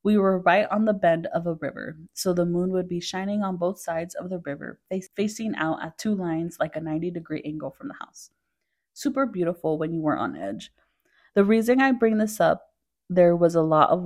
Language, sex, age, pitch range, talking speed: English, female, 20-39, 165-200 Hz, 220 wpm